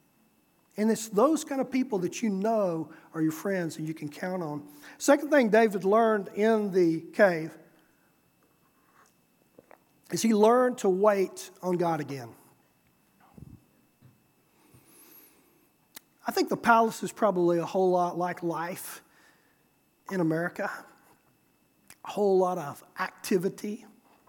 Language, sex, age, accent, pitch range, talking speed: English, male, 40-59, American, 160-220 Hz, 125 wpm